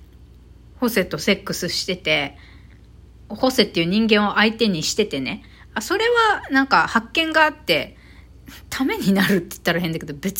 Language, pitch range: Japanese, 195-310 Hz